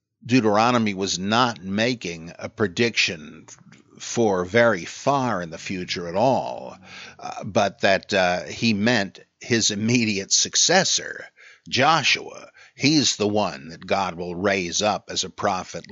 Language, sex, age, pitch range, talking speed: English, male, 60-79, 100-130 Hz, 130 wpm